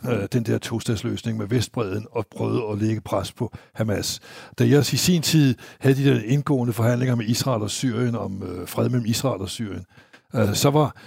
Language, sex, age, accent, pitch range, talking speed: Danish, male, 60-79, native, 110-140 Hz, 195 wpm